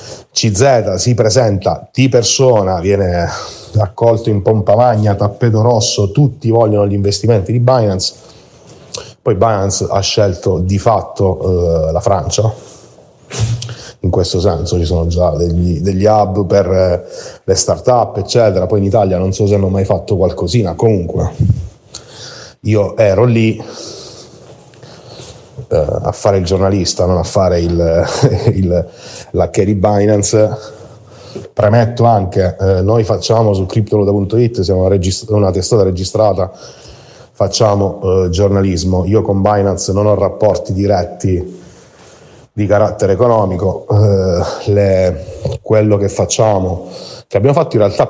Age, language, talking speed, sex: 30-49, Italian, 130 wpm, male